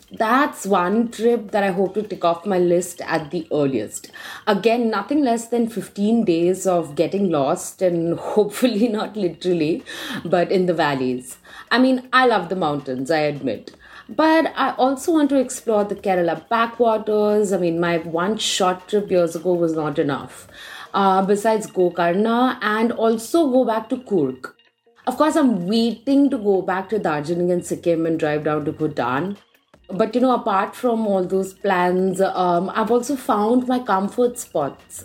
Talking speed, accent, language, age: 170 wpm, Indian, English, 30-49